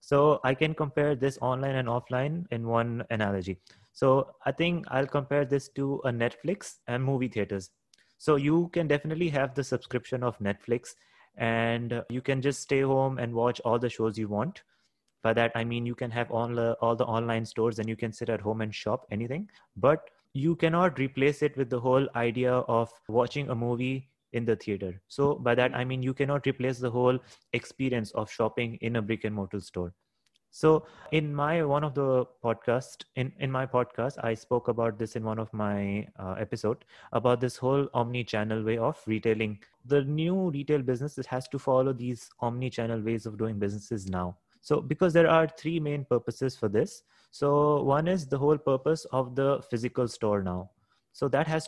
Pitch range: 115-140 Hz